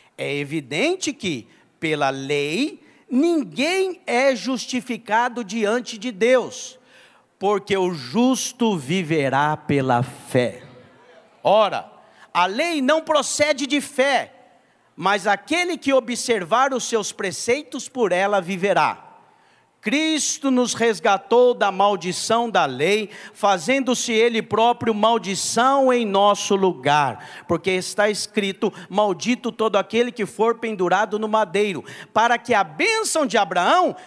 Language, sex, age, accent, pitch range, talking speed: English, male, 50-69, Brazilian, 190-255 Hz, 115 wpm